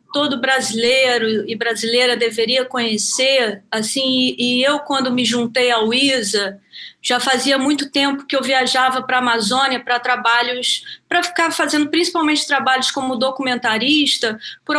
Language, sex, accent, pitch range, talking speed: Portuguese, female, Brazilian, 240-290 Hz, 140 wpm